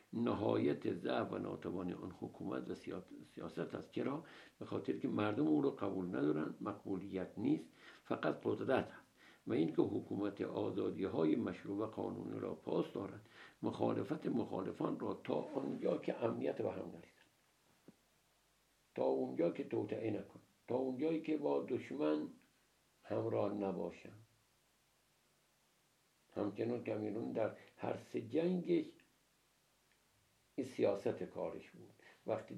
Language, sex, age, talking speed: Persian, male, 60-79, 120 wpm